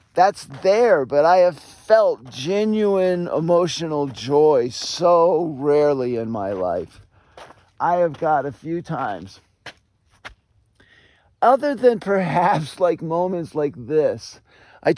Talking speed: 110 wpm